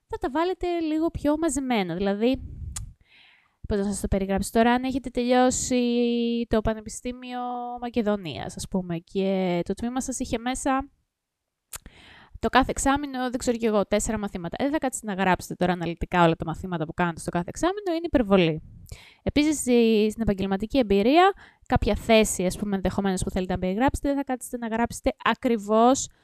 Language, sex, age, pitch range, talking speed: Greek, female, 20-39, 185-260 Hz, 165 wpm